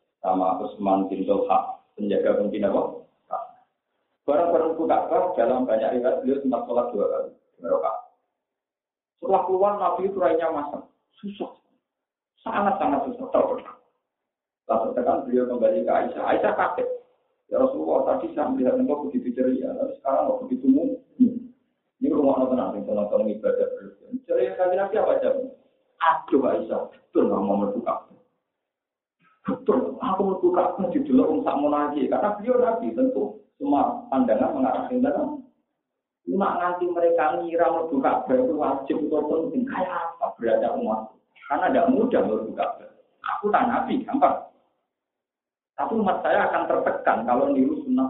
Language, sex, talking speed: Indonesian, male, 140 wpm